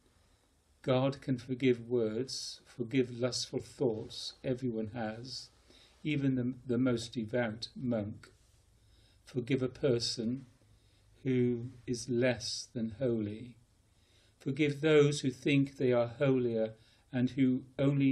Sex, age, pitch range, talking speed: male, 40-59, 110-130 Hz, 110 wpm